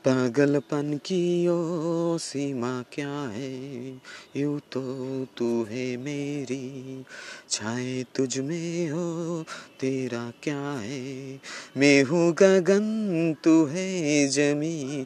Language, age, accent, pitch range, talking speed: Bengali, 30-49, native, 125-160 Hz, 70 wpm